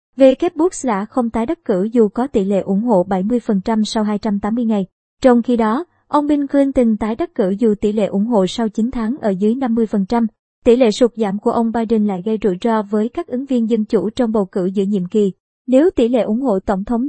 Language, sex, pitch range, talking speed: Vietnamese, male, 210-250 Hz, 235 wpm